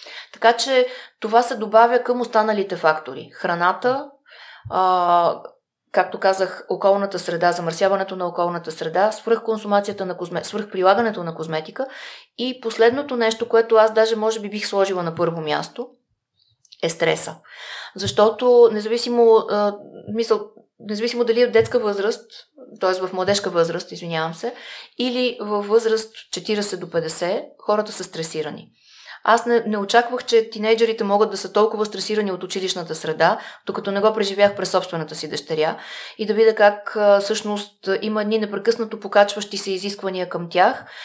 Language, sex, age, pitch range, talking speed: Bulgarian, female, 20-39, 185-225 Hz, 145 wpm